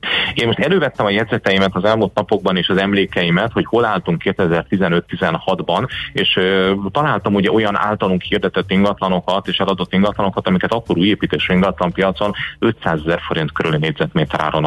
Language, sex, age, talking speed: Hungarian, male, 30-49, 150 wpm